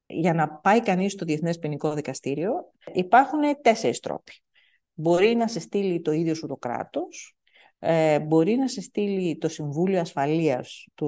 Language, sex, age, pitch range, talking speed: Greek, female, 50-69, 150-235 Hz, 155 wpm